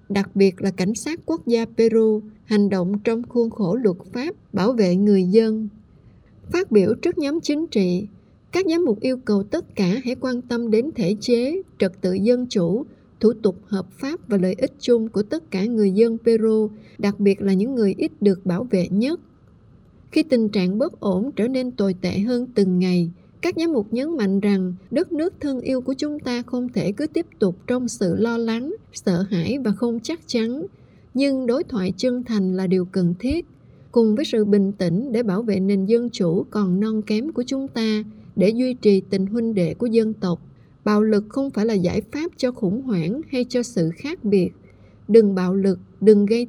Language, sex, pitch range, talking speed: Vietnamese, female, 195-250 Hz, 210 wpm